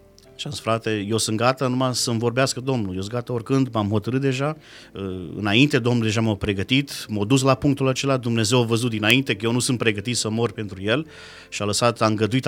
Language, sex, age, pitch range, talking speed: Romanian, male, 30-49, 105-130 Hz, 215 wpm